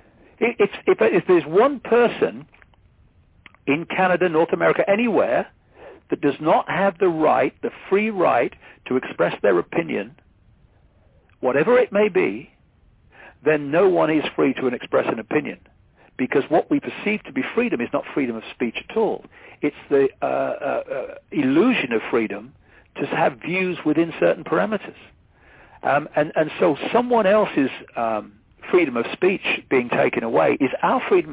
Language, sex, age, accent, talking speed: English, male, 60-79, British, 155 wpm